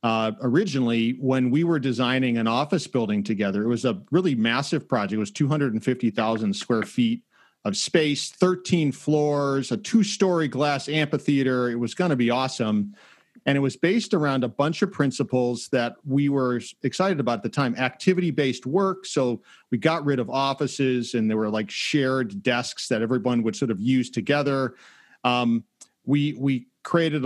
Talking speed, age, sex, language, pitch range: 170 wpm, 40-59, male, English, 125-160 Hz